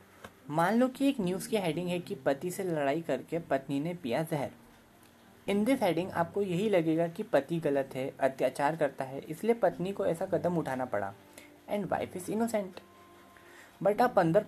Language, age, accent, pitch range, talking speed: Hindi, 20-39, native, 140-195 Hz, 180 wpm